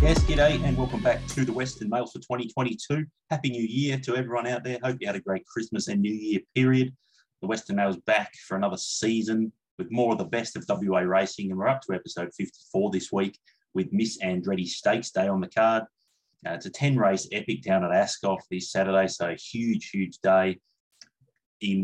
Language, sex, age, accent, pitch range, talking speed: English, male, 30-49, Australian, 95-130 Hz, 210 wpm